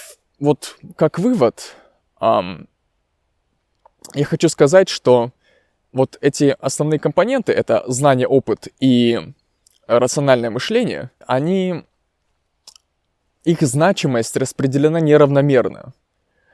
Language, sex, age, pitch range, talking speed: Russian, male, 20-39, 120-150 Hz, 80 wpm